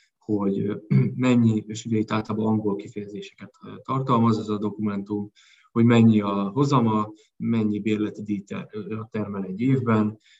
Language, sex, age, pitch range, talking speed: Hungarian, male, 20-39, 100-120 Hz, 125 wpm